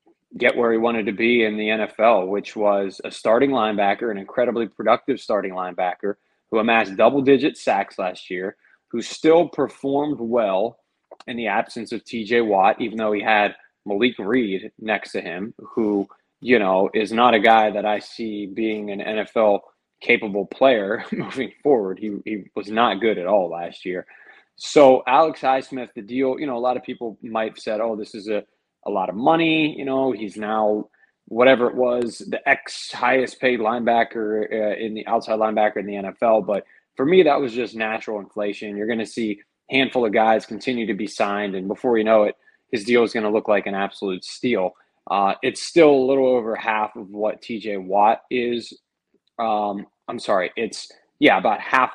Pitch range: 105-120 Hz